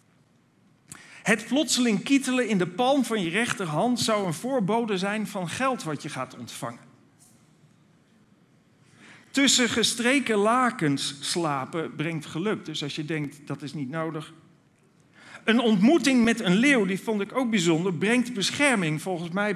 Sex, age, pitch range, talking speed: male, 50-69, 170-235 Hz, 145 wpm